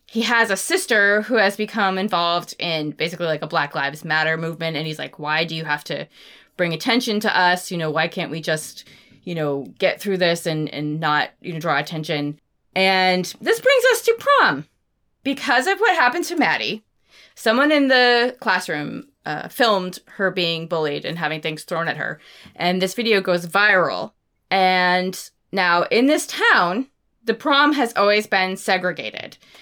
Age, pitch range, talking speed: 20-39, 165-230 Hz, 180 wpm